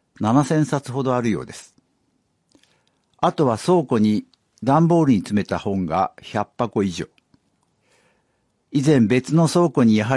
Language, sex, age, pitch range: Japanese, male, 60-79, 105-140 Hz